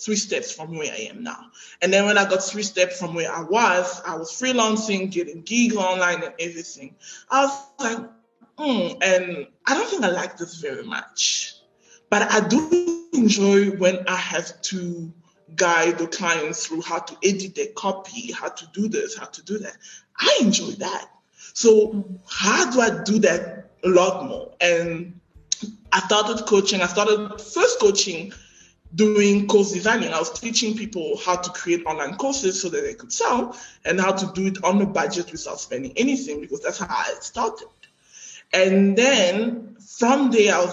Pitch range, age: 180-235 Hz, 20-39